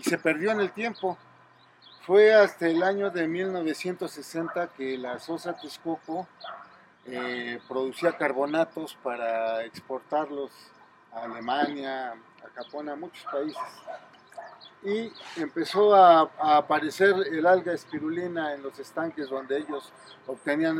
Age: 50-69